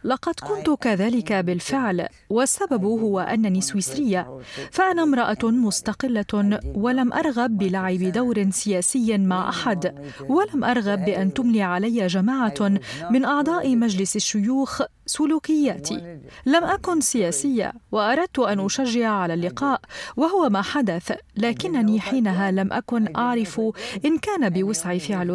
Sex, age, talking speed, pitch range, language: female, 40-59, 115 wpm, 195-255 Hz, Arabic